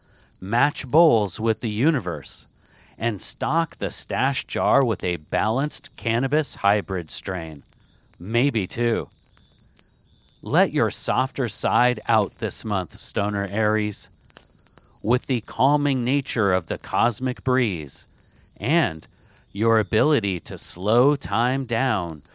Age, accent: 40-59, American